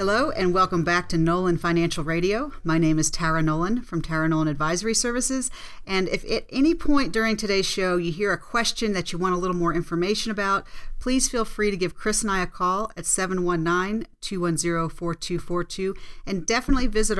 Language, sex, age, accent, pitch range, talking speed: English, female, 40-59, American, 170-200 Hz, 185 wpm